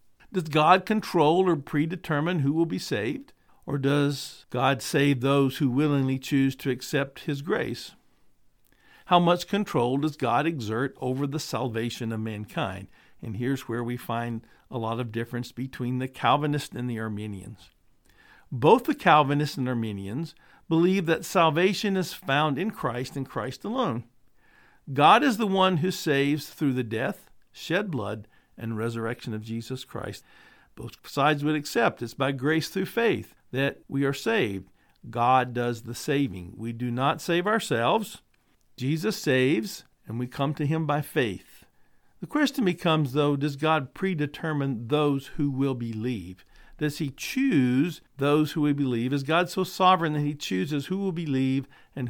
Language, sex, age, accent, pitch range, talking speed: English, male, 50-69, American, 125-165 Hz, 160 wpm